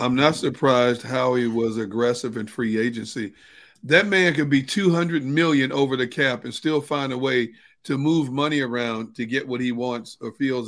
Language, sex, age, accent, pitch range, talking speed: English, male, 50-69, American, 125-150 Hz, 195 wpm